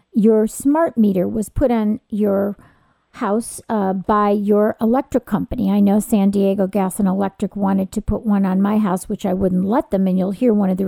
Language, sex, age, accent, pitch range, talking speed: English, female, 50-69, American, 205-245 Hz, 210 wpm